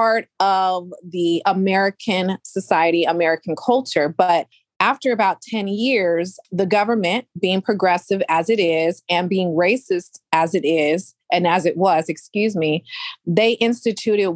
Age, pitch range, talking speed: 30-49, 185-255 Hz, 135 wpm